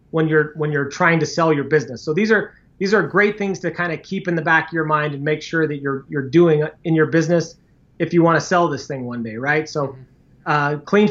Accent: American